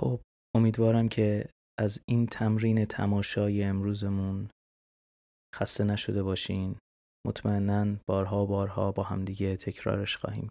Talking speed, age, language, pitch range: 95 wpm, 20-39, Persian, 95-110 Hz